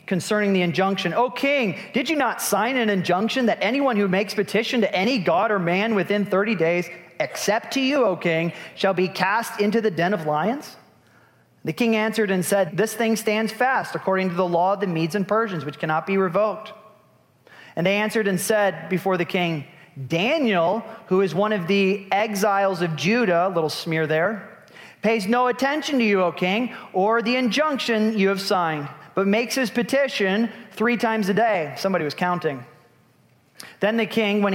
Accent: American